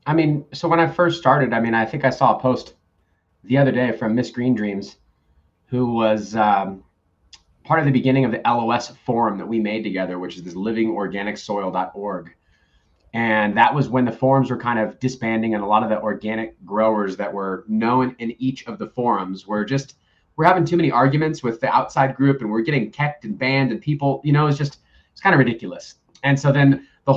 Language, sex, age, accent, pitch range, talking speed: English, male, 30-49, American, 110-135 Hz, 215 wpm